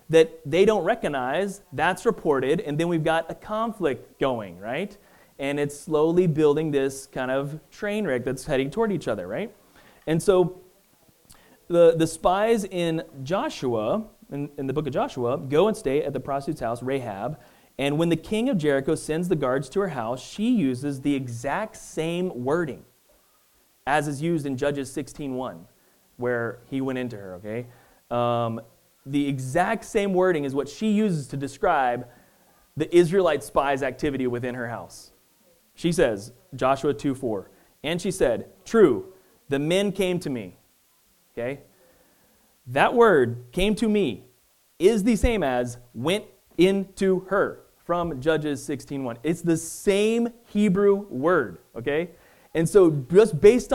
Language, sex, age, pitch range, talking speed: English, male, 30-49, 135-195 Hz, 155 wpm